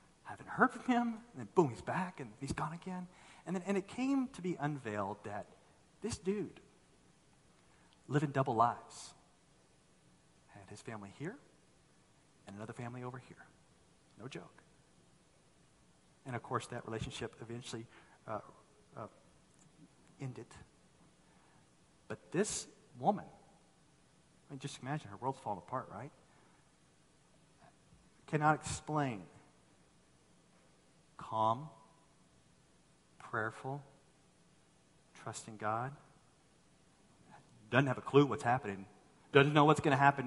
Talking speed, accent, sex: 115 wpm, American, male